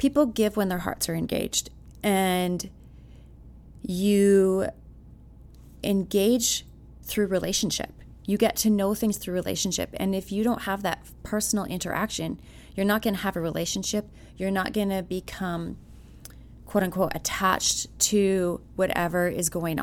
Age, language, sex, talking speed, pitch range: 20-39, English, female, 135 wpm, 170-205 Hz